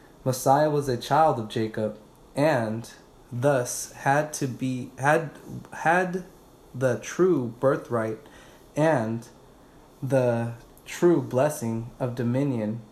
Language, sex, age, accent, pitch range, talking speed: English, male, 20-39, American, 120-150 Hz, 100 wpm